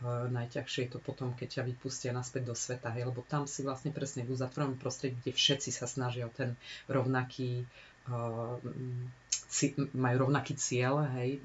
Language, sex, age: Slovak, female, 30-49